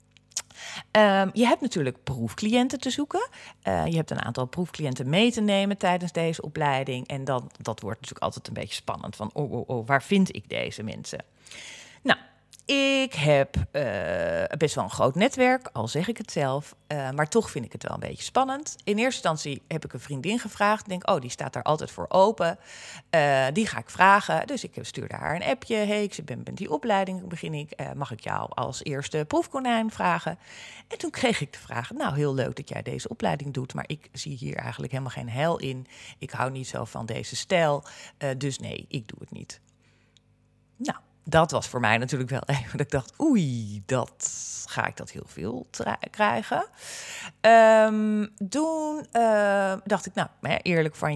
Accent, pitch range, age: Dutch, 130-220 Hz, 40-59